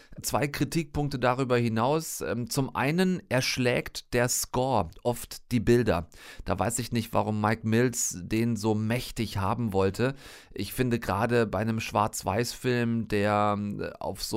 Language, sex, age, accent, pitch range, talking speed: German, male, 40-59, German, 100-130 Hz, 140 wpm